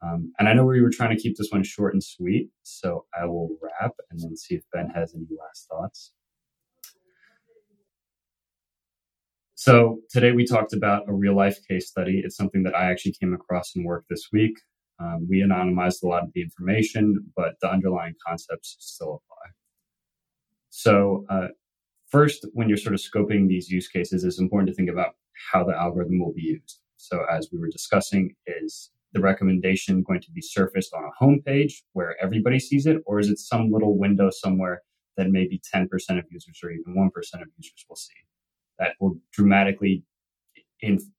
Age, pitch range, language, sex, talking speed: 20-39, 90-120 Hz, English, male, 180 wpm